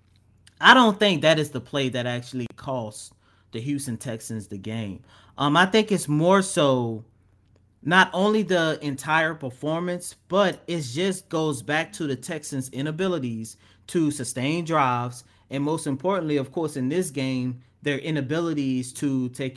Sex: male